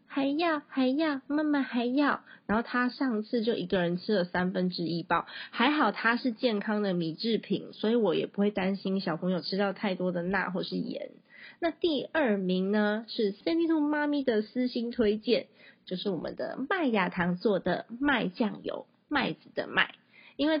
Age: 20-39